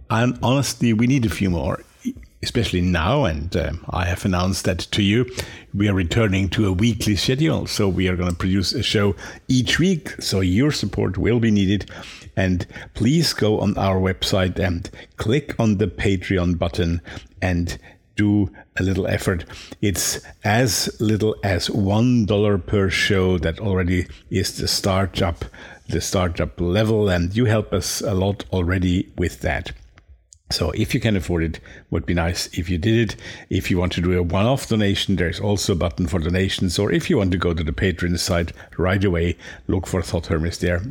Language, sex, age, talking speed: English, male, 50-69, 180 wpm